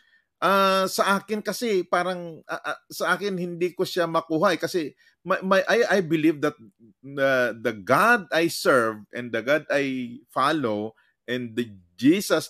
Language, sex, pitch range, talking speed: Filipino, male, 140-185 Hz, 160 wpm